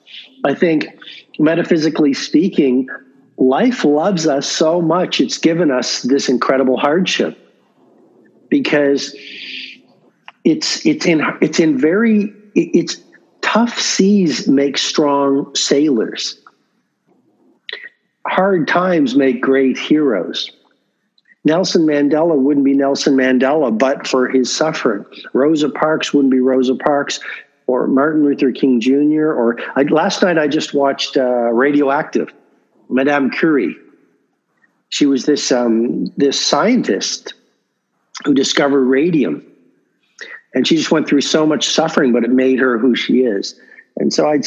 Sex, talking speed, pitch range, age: male, 125 wpm, 140-205 Hz, 50-69